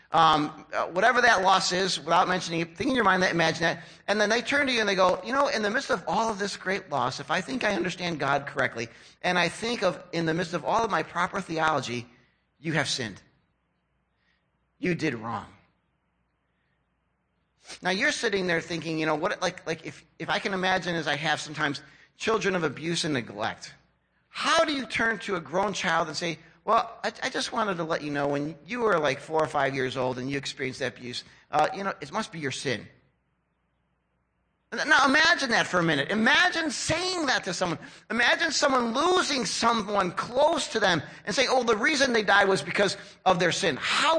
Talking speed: 215 wpm